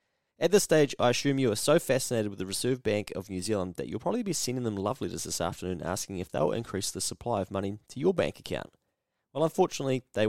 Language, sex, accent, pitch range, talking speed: English, male, Australian, 95-125 Hz, 240 wpm